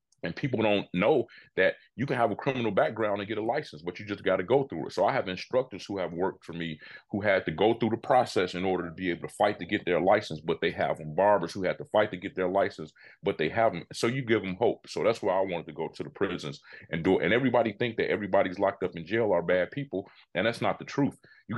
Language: English